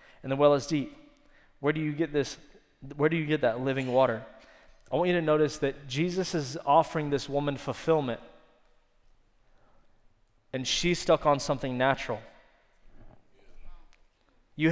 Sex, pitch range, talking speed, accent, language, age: male, 135-160 Hz, 145 wpm, American, English, 20-39